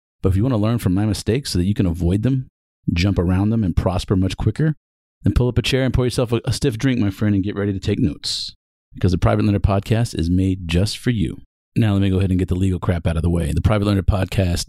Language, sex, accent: English, male, American